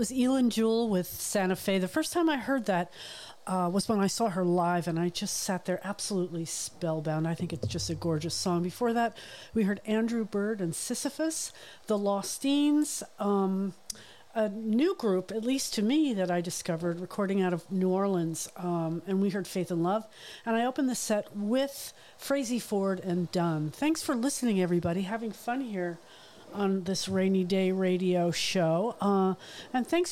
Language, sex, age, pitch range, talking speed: English, female, 50-69, 180-230 Hz, 185 wpm